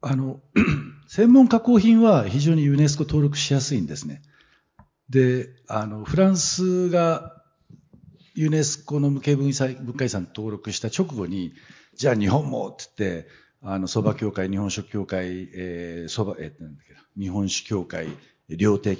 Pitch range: 95-145 Hz